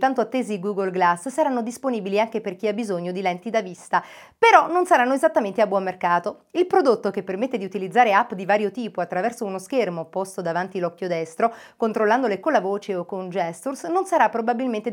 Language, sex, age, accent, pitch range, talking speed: Italian, female, 40-59, native, 185-255 Hz, 195 wpm